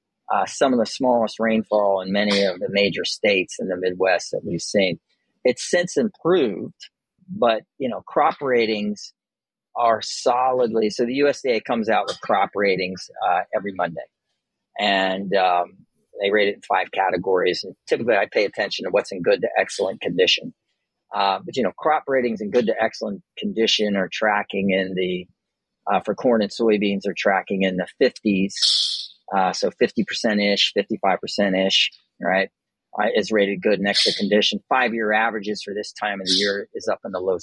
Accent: American